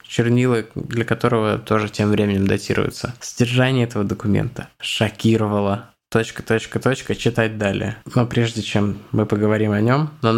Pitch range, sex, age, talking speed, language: 110-130 Hz, male, 20-39, 125 wpm, Russian